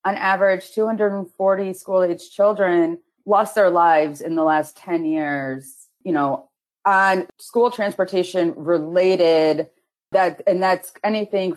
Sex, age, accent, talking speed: female, 30-49, American, 120 wpm